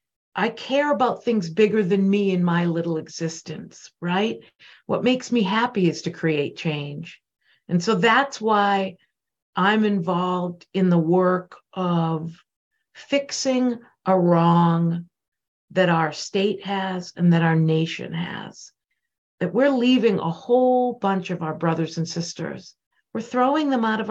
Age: 50-69